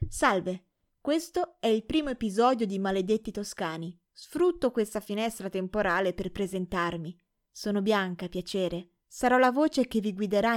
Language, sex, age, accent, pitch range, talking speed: Italian, female, 20-39, native, 190-235 Hz, 135 wpm